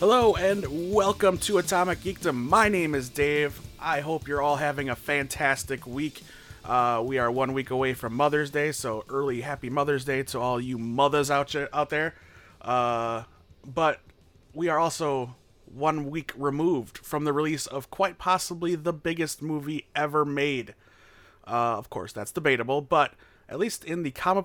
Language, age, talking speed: English, 30-49, 170 wpm